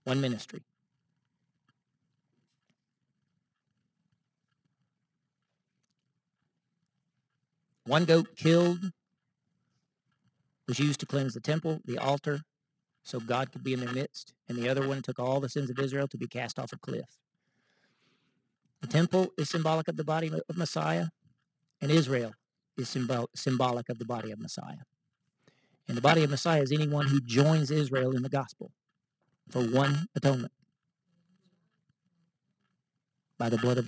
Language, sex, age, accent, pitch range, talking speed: English, male, 50-69, American, 130-165 Hz, 130 wpm